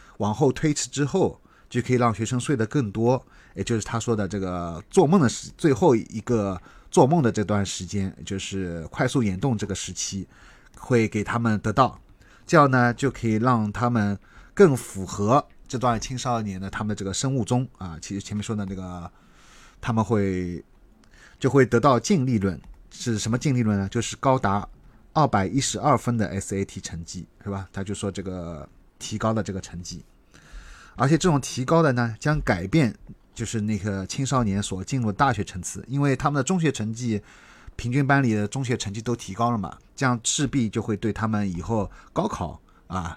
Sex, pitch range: male, 100-130 Hz